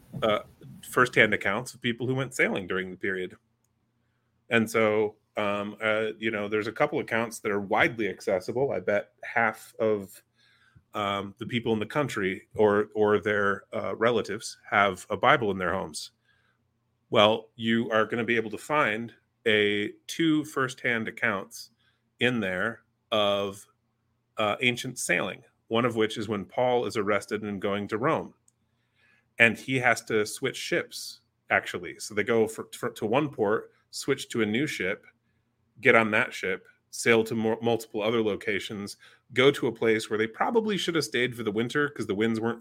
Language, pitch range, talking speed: English, 110-120 Hz, 170 wpm